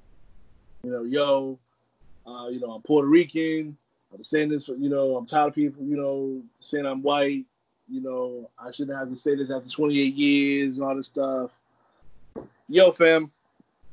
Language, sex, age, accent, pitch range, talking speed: English, male, 20-39, American, 125-170 Hz, 170 wpm